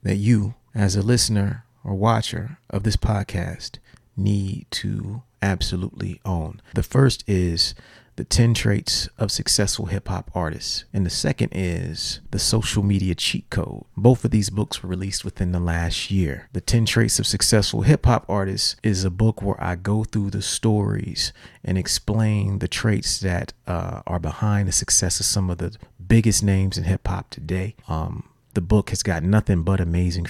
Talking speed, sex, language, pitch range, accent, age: 175 wpm, male, English, 90-110 Hz, American, 30-49